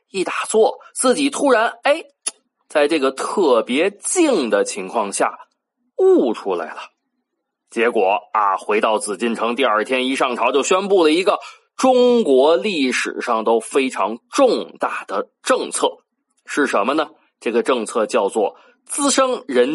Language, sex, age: Chinese, male, 20-39